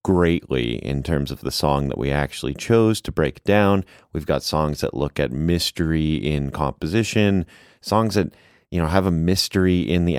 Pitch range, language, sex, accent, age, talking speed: 75-95 Hz, English, male, American, 30-49, 185 wpm